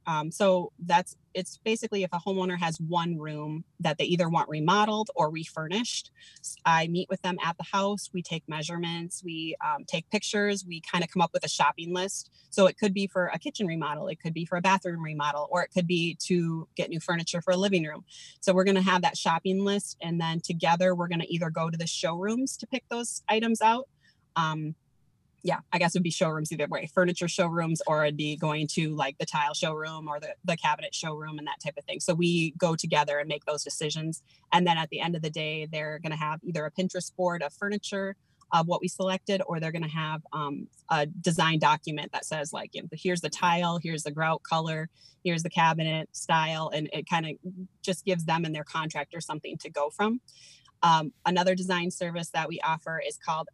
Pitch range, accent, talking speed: 155-185 Hz, American, 220 wpm